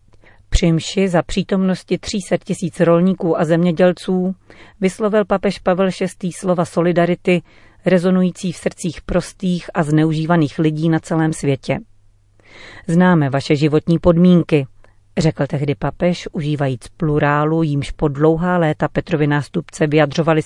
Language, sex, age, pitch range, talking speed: Czech, female, 40-59, 145-180 Hz, 115 wpm